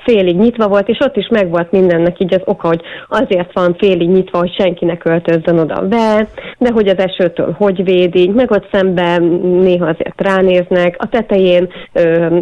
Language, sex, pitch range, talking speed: Hungarian, female, 175-195 Hz, 175 wpm